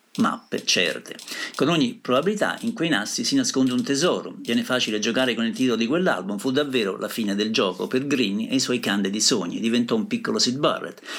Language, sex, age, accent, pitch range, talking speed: Italian, male, 50-69, native, 115-195 Hz, 205 wpm